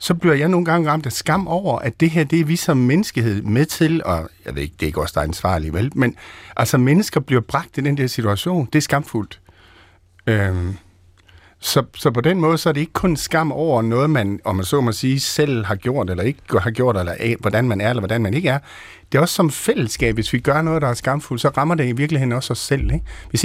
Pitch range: 100-150 Hz